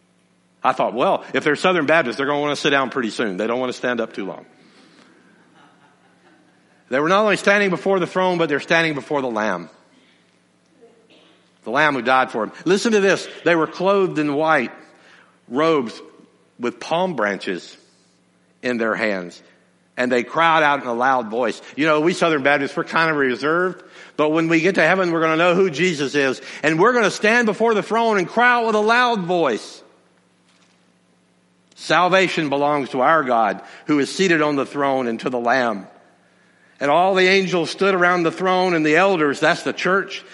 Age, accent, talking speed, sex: 60-79, American, 200 wpm, male